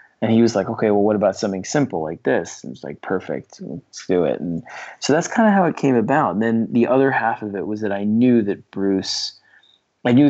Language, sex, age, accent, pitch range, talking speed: English, male, 20-39, American, 95-115 Hz, 255 wpm